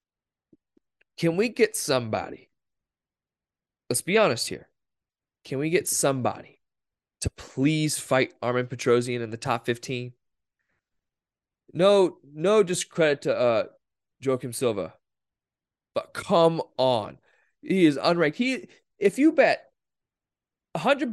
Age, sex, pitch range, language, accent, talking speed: 20-39, male, 115-160 Hz, English, American, 110 wpm